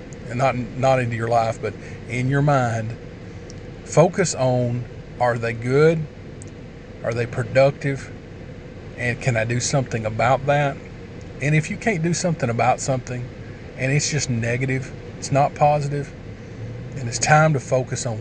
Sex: male